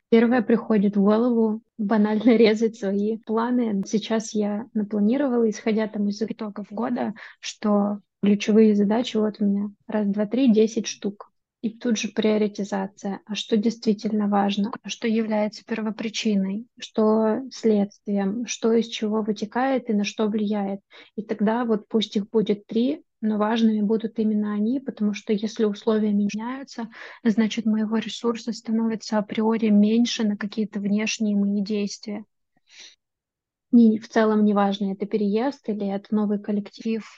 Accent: native